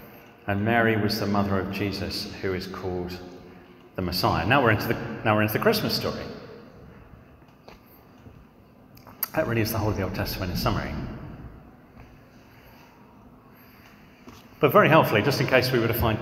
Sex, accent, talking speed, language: male, British, 160 wpm, English